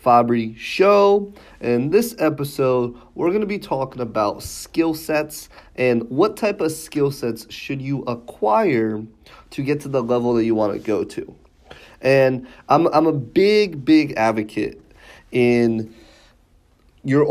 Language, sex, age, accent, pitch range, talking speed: English, male, 30-49, American, 110-145 Hz, 145 wpm